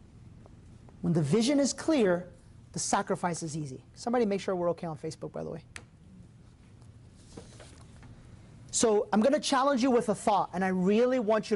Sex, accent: male, American